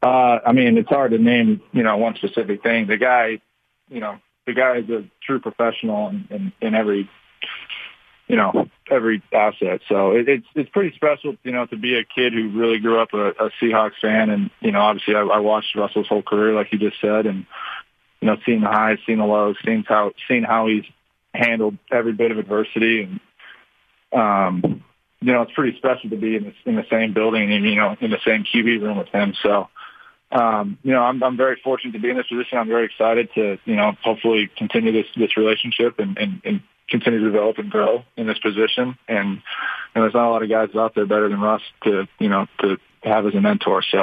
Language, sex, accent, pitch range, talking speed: English, male, American, 110-130 Hz, 225 wpm